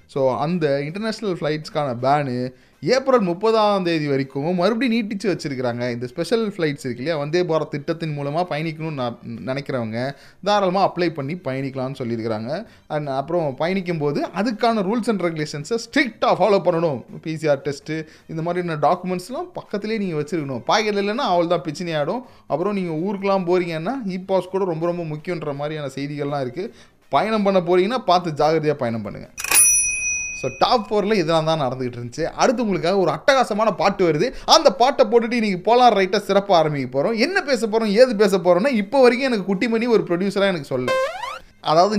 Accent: native